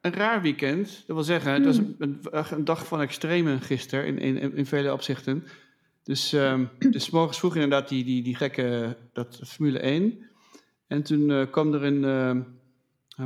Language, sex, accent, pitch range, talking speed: English, male, Dutch, 130-155 Hz, 170 wpm